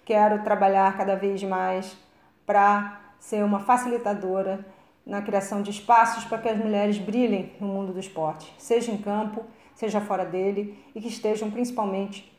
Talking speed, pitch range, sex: 155 wpm, 195-220 Hz, female